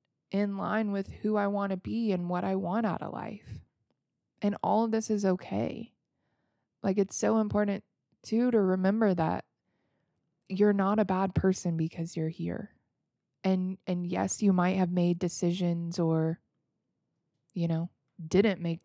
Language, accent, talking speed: English, American, 160 wpm